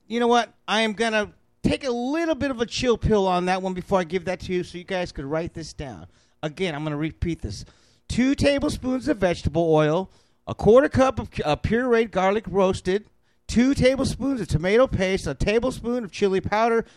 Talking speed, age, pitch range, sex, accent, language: 210 wpm, 40-59, 180-245 Hz, male, American, English